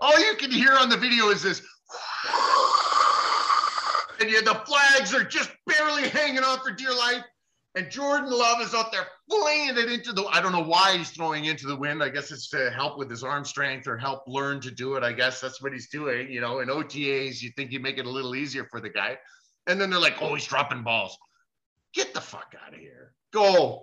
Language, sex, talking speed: English, male, 230 wpm